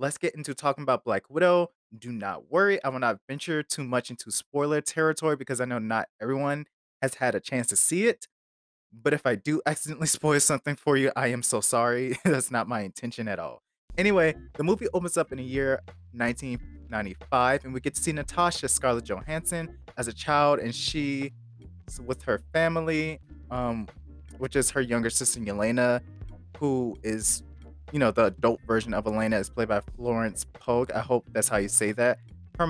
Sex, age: male, 20-39